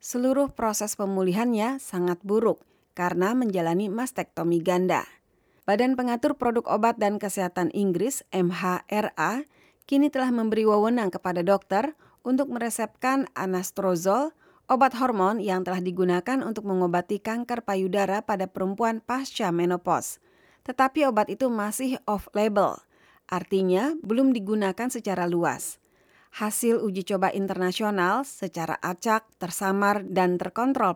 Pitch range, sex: 180-240 Hz, female